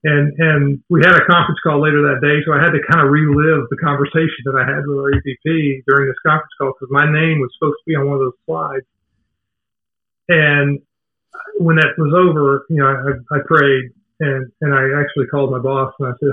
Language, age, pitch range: English, 40-59, 135-160 Hz